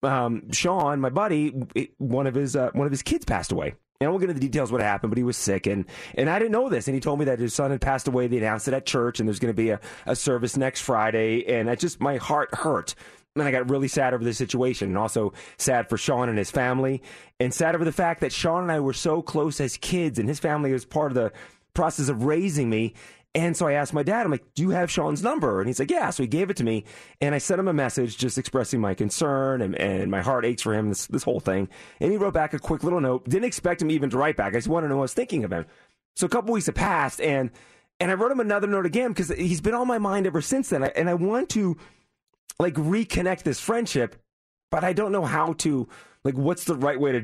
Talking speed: 280 wpm